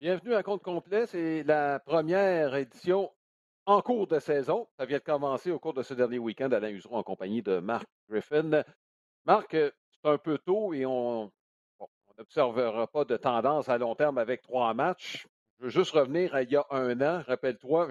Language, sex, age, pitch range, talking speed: French, male, 60-79, 125-175 Hz, 195 wpm